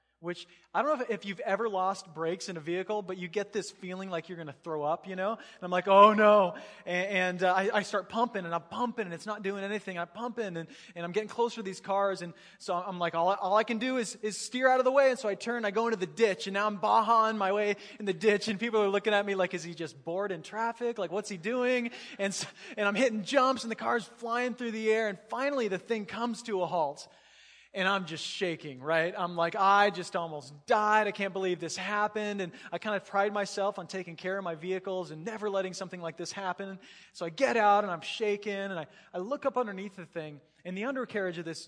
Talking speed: 260 wpm